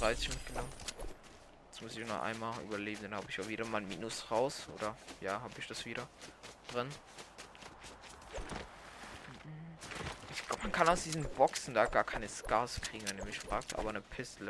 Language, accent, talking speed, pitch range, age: German, German, 160 wpm, 105-125 Hz, 20-39